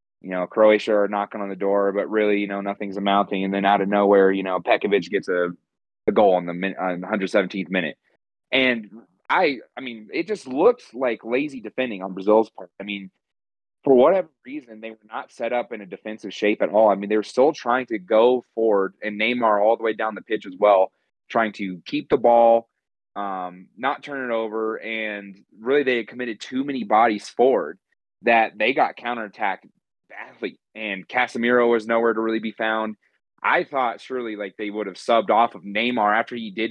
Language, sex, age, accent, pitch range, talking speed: English, male, 30-49, American, 100-115 Hz, 205 wpm